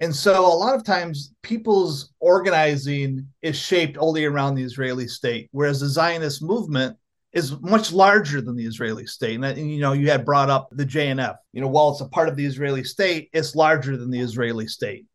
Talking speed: 200 wpm